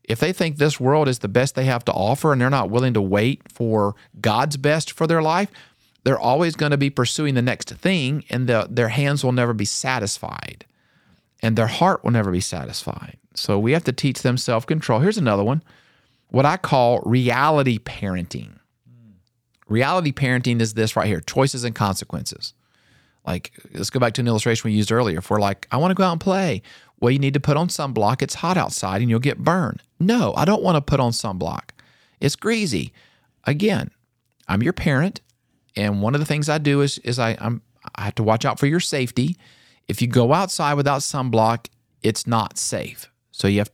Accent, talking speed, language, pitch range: American, 205 wpm, English, 115-145 Hz